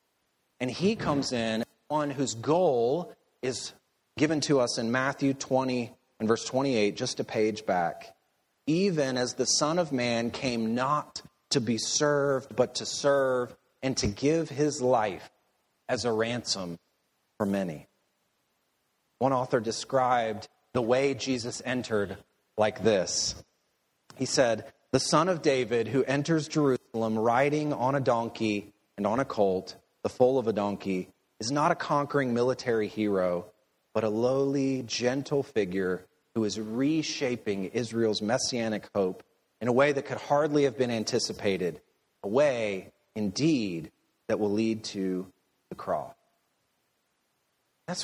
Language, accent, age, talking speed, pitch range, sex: English, American, 30-49, 140 wpm, 110-140 Hz, male